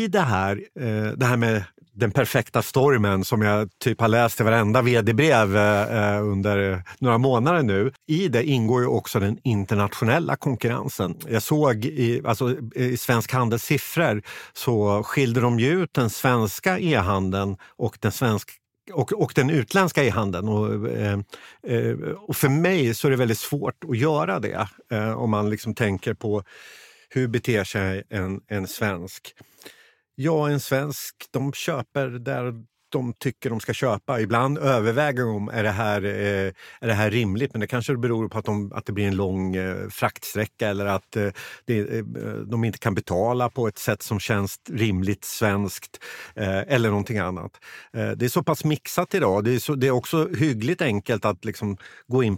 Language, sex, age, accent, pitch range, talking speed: Swedish, male, 50-69, native, 105-130 Hz, 165 wpm